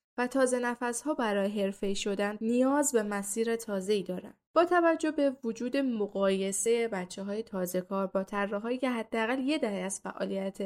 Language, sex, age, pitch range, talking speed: Persian, female, 10-29, 195-245 Hz, 140 wpm